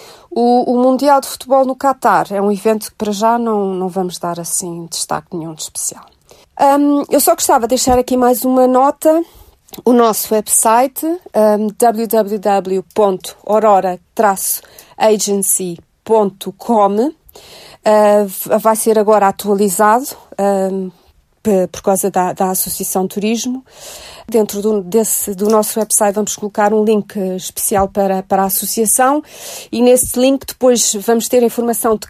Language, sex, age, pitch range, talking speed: Portuguese, female, 40-59, 200-235 Hz, 125 wpm